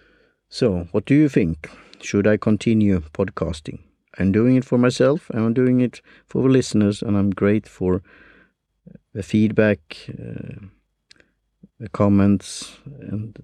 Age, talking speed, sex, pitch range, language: 50-69, 130 wpm, male, 95-115 Hz, English